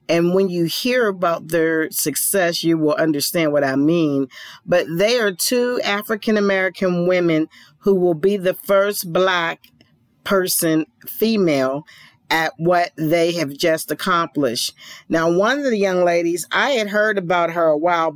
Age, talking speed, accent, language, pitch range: 40-59, 150 wpm, American, English, 160-195 Hz